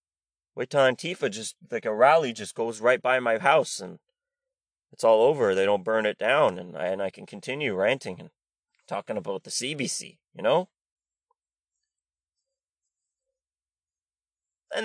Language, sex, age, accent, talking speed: English, male, 30-49, American, 145 wpm